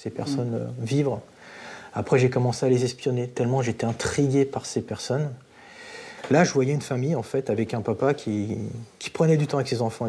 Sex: male